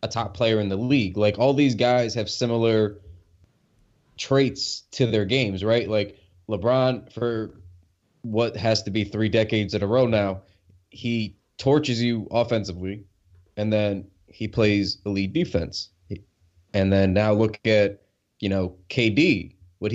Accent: American